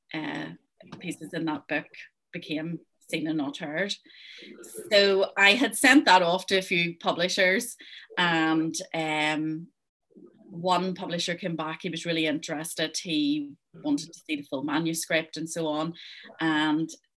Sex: female